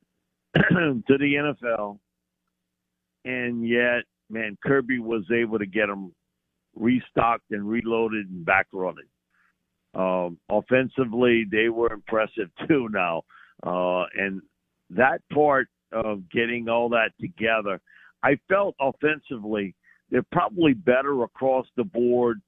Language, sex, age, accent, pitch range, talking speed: English, male, 60-79, American, 95-125 Hz, 110 wpm